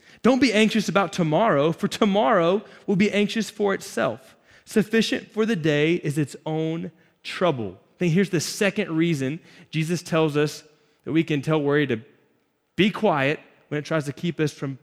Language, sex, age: English, male, 20-39